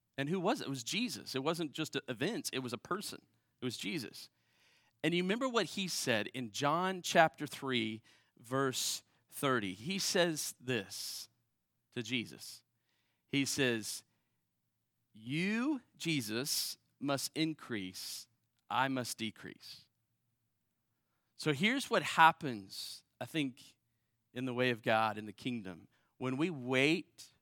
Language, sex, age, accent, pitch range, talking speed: English, male, 40-59, American, 115-140 Hz, 135 wpm